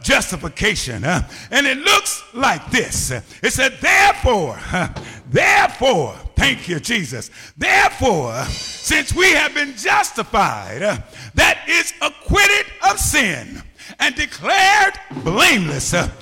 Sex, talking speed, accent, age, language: male, 100 wpm, American, 50-69, English